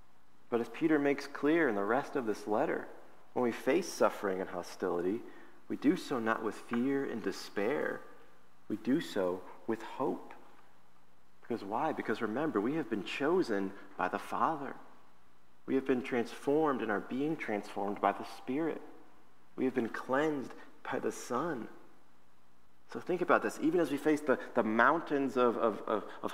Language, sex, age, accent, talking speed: English, male, 40-59, American, 165 wpm